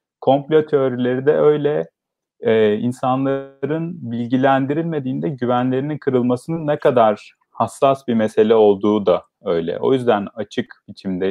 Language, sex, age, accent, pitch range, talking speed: Turkish, male, 40-59, native, 105-150 Hz, 110 wpm